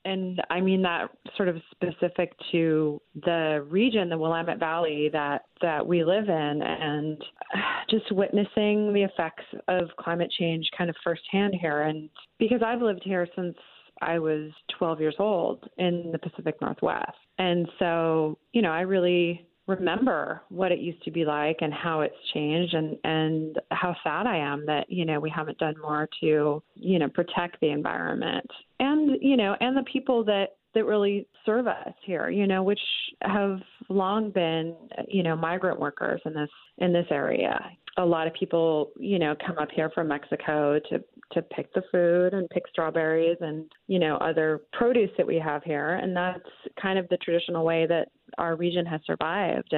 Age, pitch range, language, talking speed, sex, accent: 30-49, 155-190 Hz, English, 180 wpm, female, American